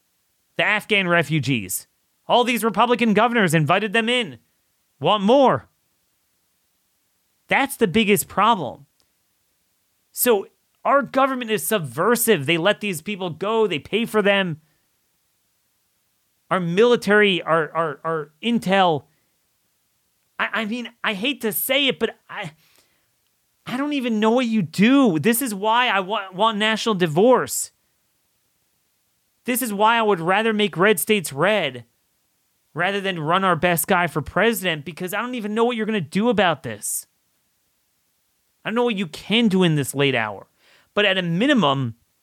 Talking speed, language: 150 wpm, English